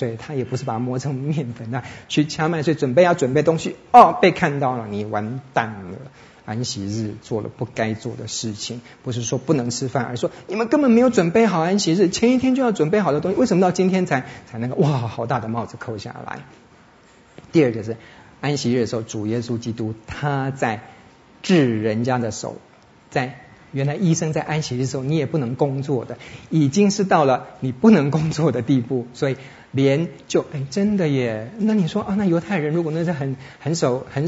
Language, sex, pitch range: Chinese, male, 120-160 Hz